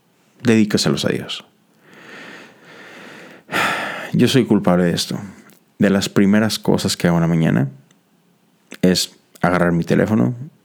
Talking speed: 120 wpm